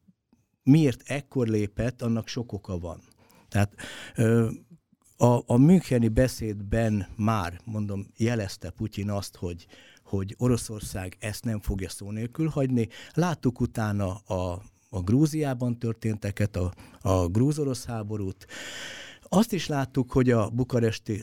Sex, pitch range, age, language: male, 100-120 Hz, 60-79, Hungarian